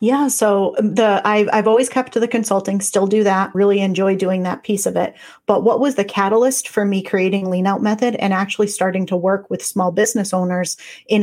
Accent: American